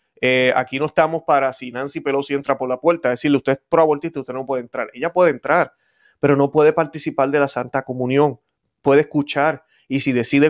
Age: 30-49